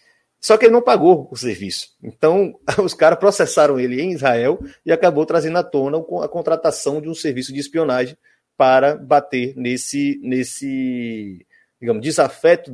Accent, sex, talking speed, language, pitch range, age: Brazilian, male, 150 wpm, Portuguese, 125-160 Hz, 30-49